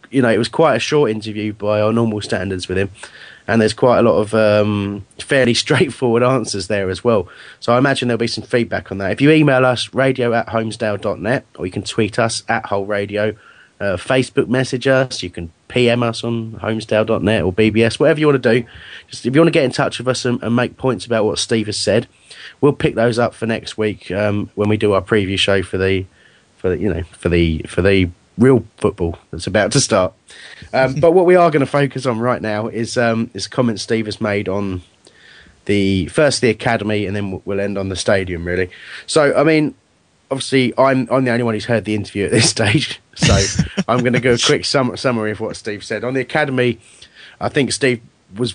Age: 30-49